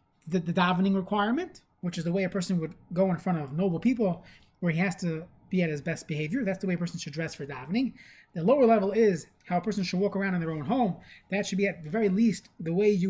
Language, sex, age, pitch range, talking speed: English, male, 20-39, 175-215 Hz, 270 wpm